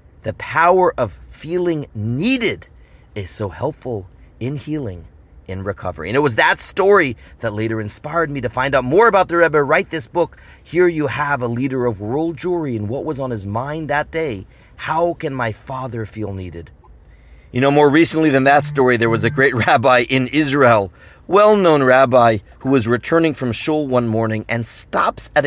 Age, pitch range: 30-49, 110-155 Hz